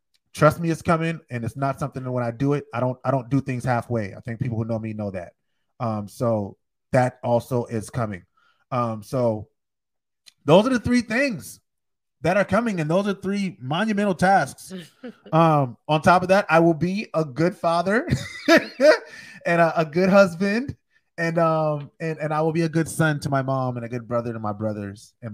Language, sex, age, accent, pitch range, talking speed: English, male, 30-49, American, 120-180 Hz, 205 wpm